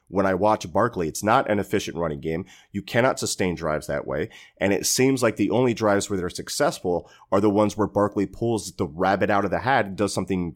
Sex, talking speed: male, 235 wpm